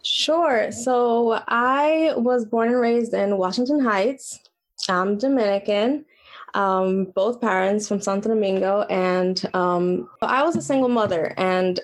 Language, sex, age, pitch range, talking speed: English, female, 20-39, 185-235 Hz, 130 wpm